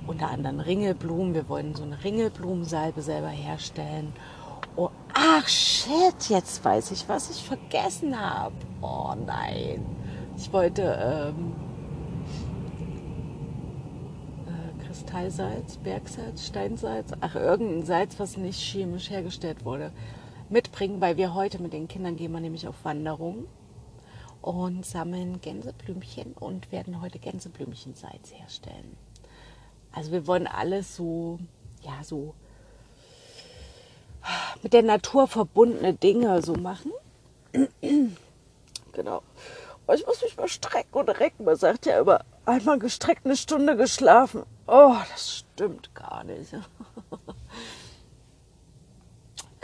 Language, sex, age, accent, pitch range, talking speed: German, female, 40-59, German, 150-200 Hz, 110 wpm